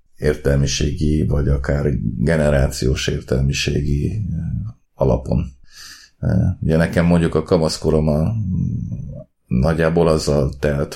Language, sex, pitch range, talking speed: Hungarian, male, 75-85 Hz, 75 wpm